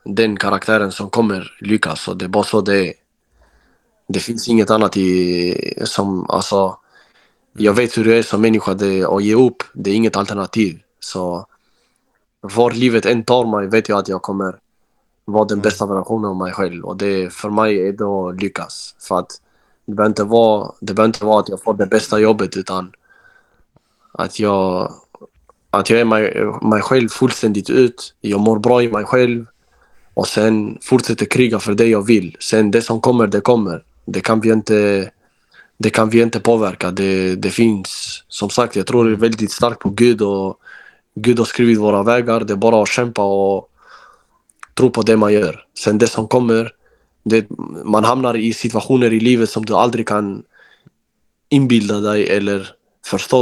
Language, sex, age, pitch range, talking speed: Swedish, male, 20-39, 100-115 Hz, 180 wpm